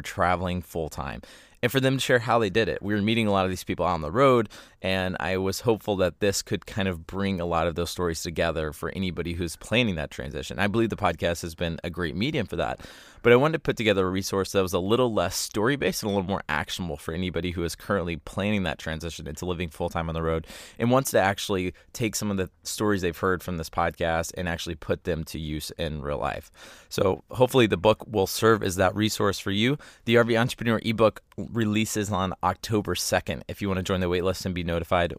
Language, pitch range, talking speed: English, 90-110 Hz, 240 wpm